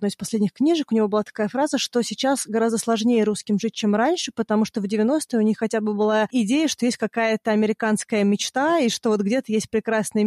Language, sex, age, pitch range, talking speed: Russian, female, 20-39, 190-225 Hz, 215 wpm